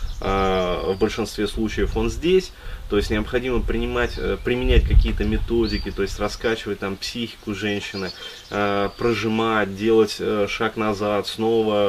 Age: 20-39